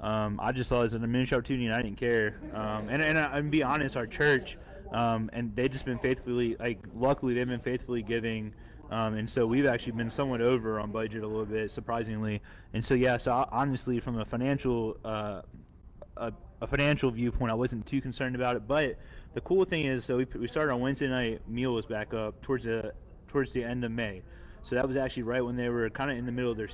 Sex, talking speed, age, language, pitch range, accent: male, 240 wpm, 20-39, English, 110-135 Hz, American